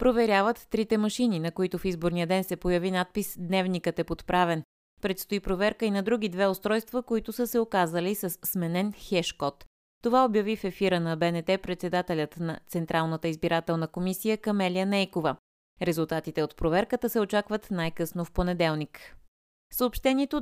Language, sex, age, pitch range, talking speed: Bulgarian, female, 20-39, 165-215 Hz, 145 wpm